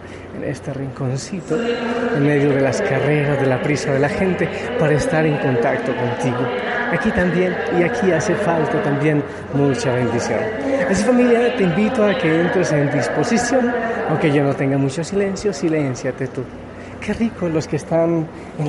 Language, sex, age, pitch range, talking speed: Spanish, male, 30-49, 130-180 Hz, 165 wpm